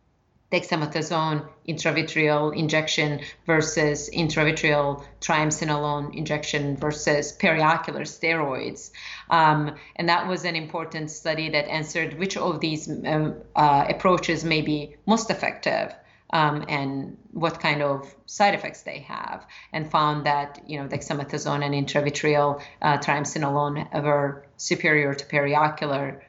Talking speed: 120 wpm